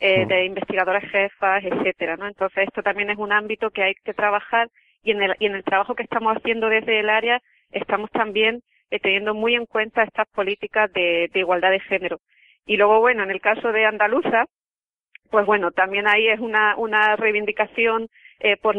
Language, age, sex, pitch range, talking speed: Spanish, 30-49, female, 195-220 Hz, 195 wpm